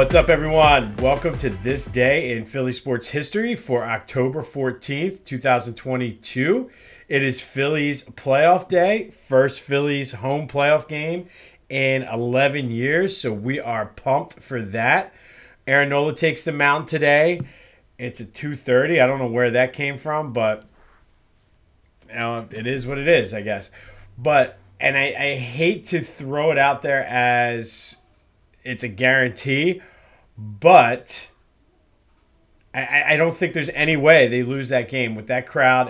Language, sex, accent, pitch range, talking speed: English, male, American, 115-140 Hz, 145 wpm